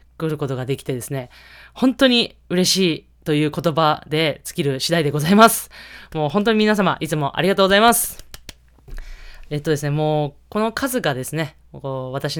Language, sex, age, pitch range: Japanese, female, 20-39, 135-190 Hz